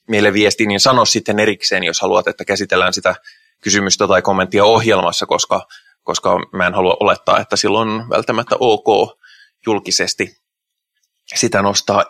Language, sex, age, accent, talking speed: Finnish, male, 20-39, native, 140 wpm